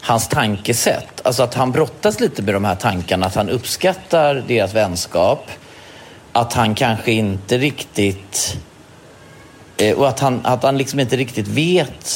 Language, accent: Swedish, native